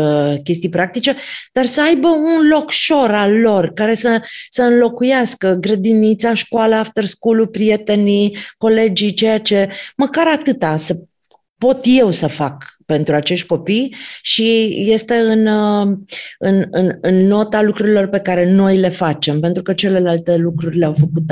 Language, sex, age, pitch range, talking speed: Romanian, female, 30-49, 170-220 Hz, 140 wpm